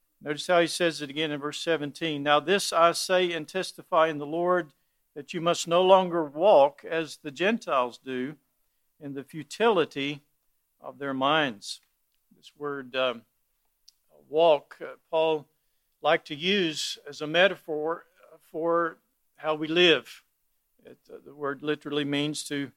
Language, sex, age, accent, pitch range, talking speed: English, male, 50-69, American, 150-175 Hz, 150 wpm